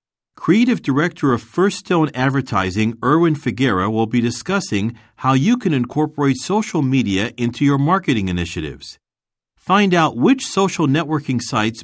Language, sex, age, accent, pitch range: Japanese, male, 50-69, American, 110-155 Hz